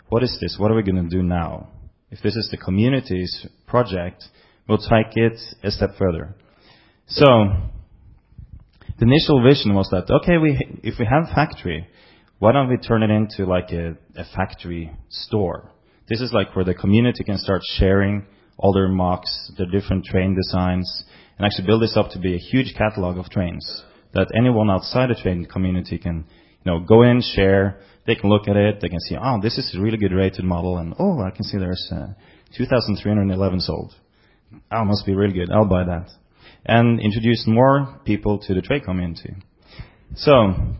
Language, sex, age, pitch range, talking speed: English, male, 30-49, 90-115 Hz, 190 wpm